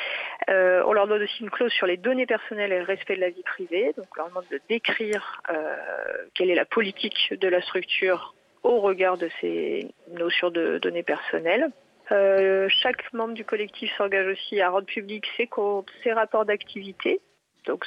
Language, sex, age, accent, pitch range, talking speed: French, female, 40-59, French, 180-225 Hz, 190 wpm